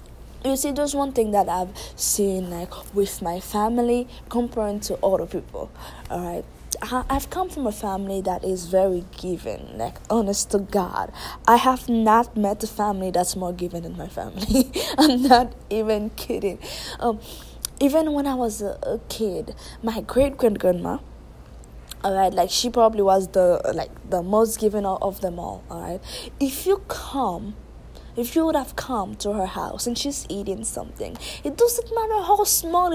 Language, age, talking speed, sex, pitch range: English, 20-39, 170 wpm, female, 195-265 Hz